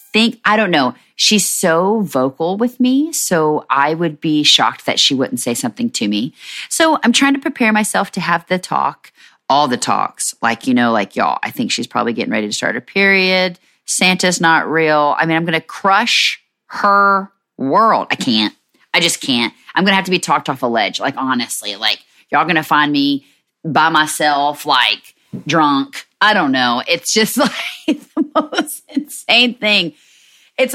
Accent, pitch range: American, 155-250 Hz